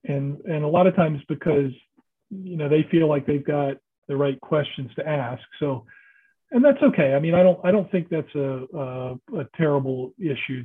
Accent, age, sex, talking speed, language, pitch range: American, 40-59, male, 205 wpm, English, 140-170 Hz